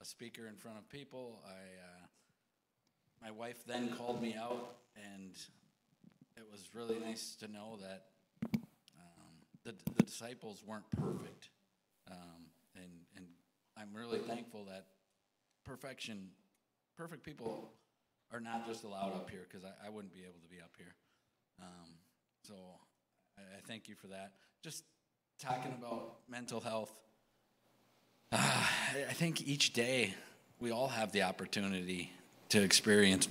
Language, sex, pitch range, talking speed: English, male, 95-115 Hz, 140 wpm